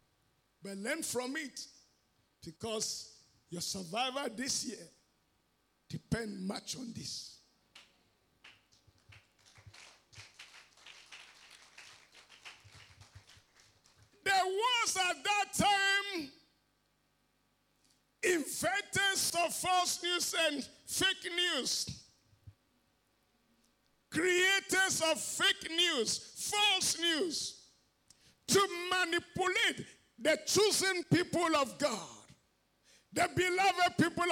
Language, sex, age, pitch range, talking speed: English, male, 50-69, 240-370 Hz, 70 wpm